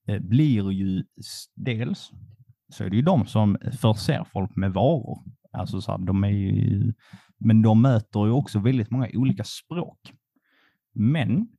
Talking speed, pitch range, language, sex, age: 130 wpm, 105-130 Hz, Swedish, male, 30-49